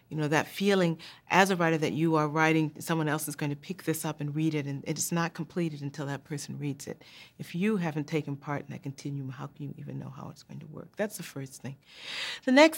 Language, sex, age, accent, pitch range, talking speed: English, female, 40-59, American, 140-170 Hz, 260 wpm